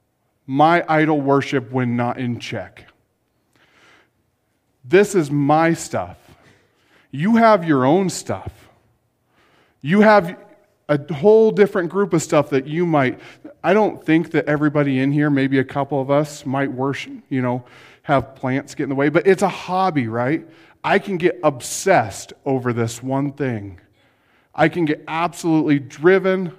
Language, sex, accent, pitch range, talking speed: English, male, American, 130-170 Hz, 150 wpm